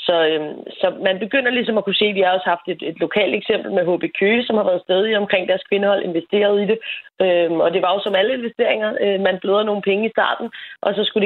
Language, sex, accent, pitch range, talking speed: Danish, female, native, 175-215 Hz, 255 wpm